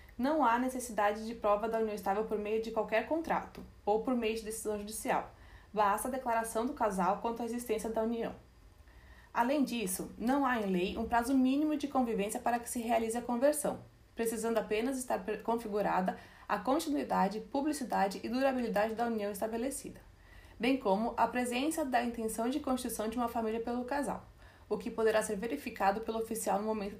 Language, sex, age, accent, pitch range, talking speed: Portuguese, female, 20-39, Brazilian, 210-250 Hz, 180 wpm